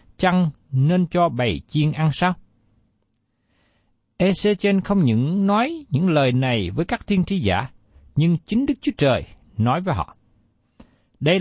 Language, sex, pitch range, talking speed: Vietnamese, male, 110-185 Hz, 145 wpm